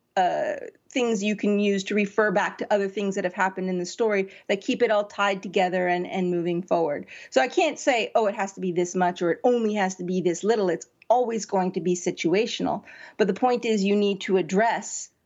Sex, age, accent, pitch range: female, 40-59, American, 185-225 Hz